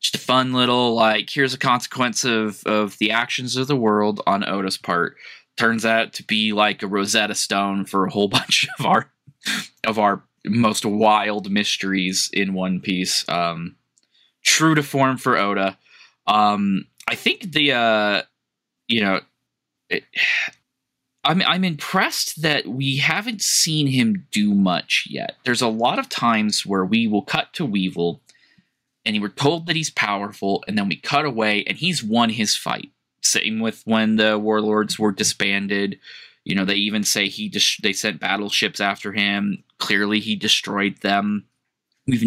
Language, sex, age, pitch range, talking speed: English, male, 20-39, 100-120 Hz, 165 wpm